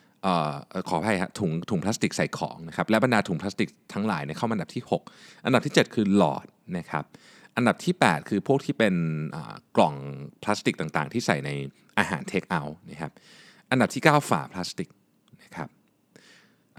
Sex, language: male, Thai